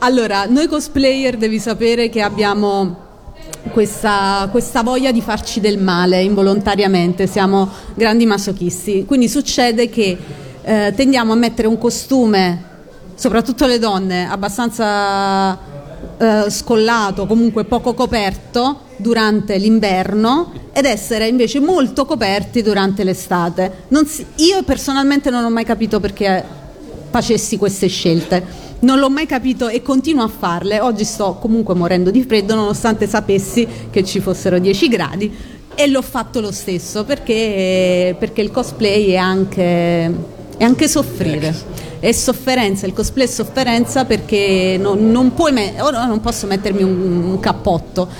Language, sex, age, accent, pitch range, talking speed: Italian, female, 40-59, native, 195-245 Hz, 130 wpm